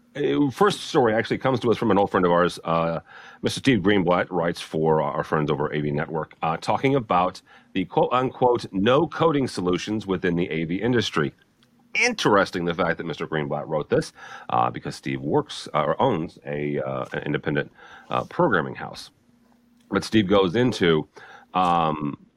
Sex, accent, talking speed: male, American, 170 wpm